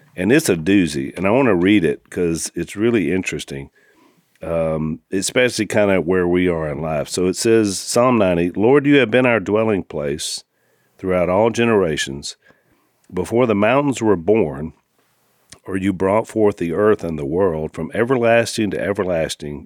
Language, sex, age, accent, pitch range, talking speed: English, male, 50-69, American, 85-115 Hz, 170 wpm